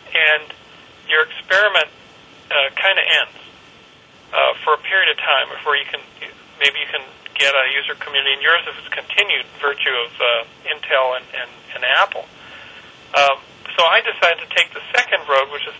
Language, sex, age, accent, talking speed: English, male, 40-59, American, 180 wpm